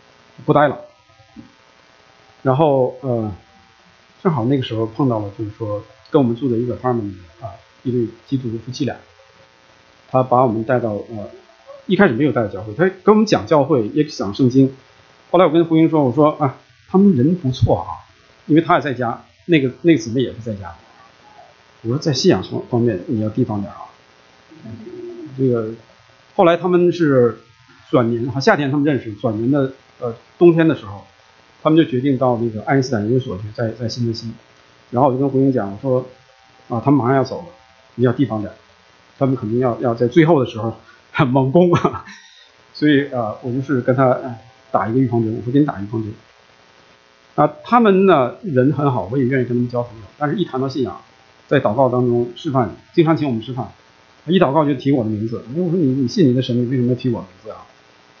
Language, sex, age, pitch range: English, male, 50-69, 100-140 Hz